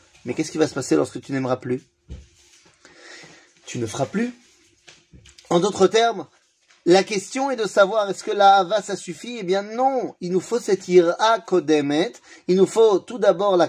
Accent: French